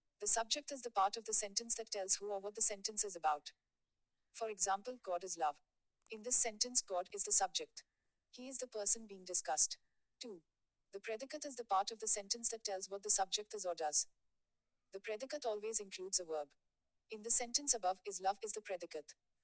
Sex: female